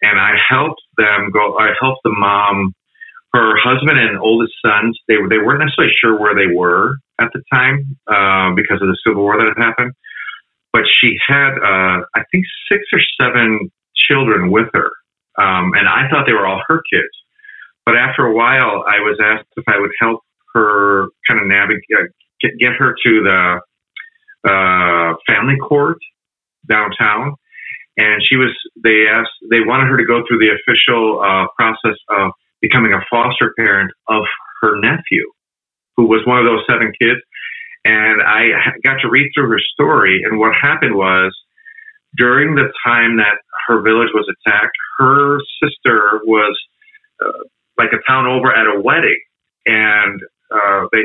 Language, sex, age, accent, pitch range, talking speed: English, male, 40-59, American, 105-135 Hz, 165 wpm